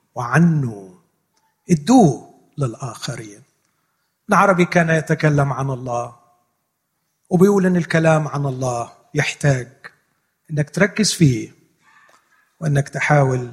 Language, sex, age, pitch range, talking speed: Arabic, male, 40-59, 135-175 Hz, 85 wpm